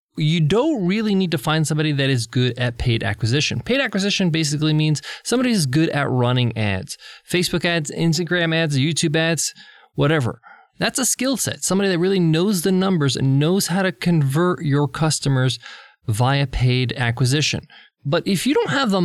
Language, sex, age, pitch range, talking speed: English, male, 20-39, 130-180 Hz, 175 wpm